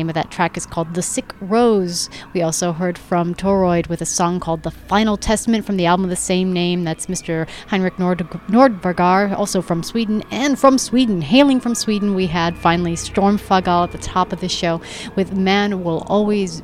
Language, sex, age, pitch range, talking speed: English, female, 30-49, 170-210 Hz, 200 wpm